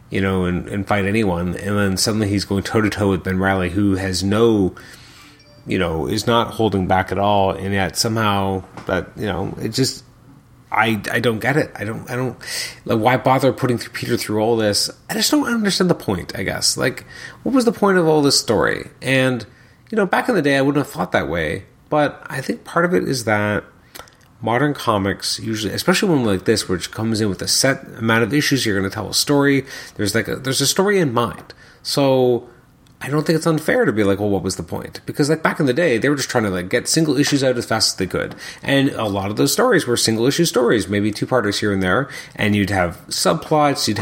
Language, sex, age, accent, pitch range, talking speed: English, male, 30-49, American, 100-135 Hz, 235 wpm